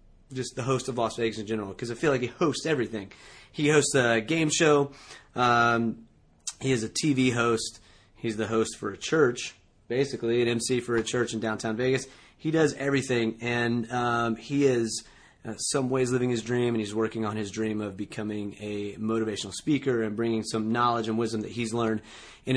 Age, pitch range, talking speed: 30-49, 110-130 Hz, 200 wpm